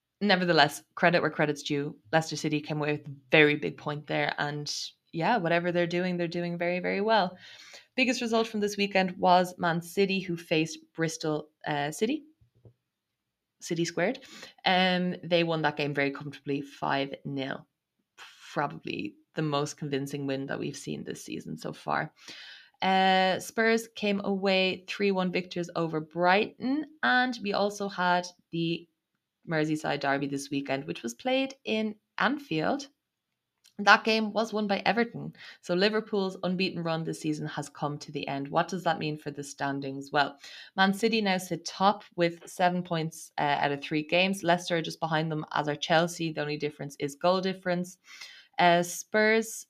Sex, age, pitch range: female, 20-39, 155-200 Hz